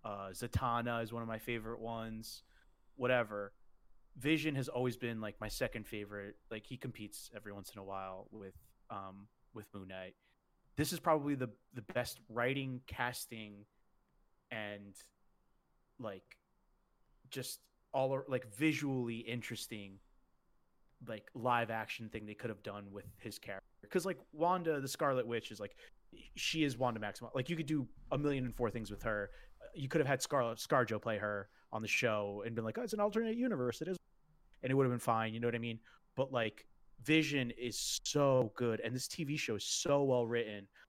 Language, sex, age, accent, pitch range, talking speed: English, male, 30-49, American, 105-130 Hz, 185 wpm